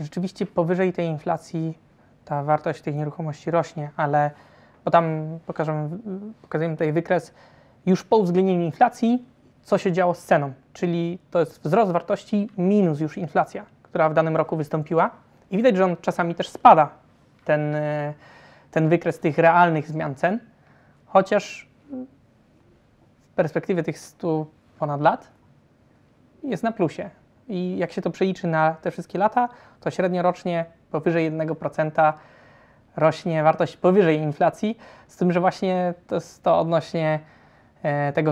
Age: 20-39